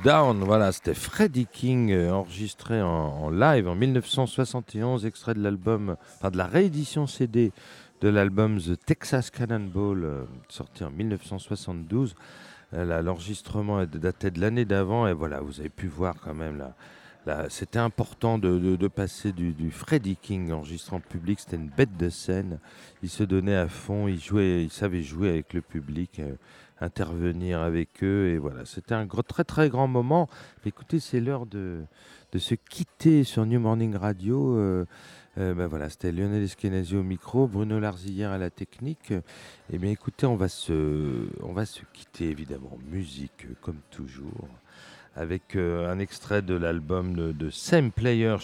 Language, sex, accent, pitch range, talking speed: French, male, French, 85-115 Hz, 165 wpm